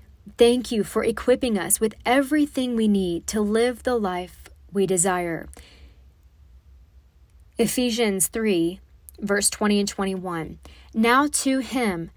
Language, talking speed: English, 120 wpm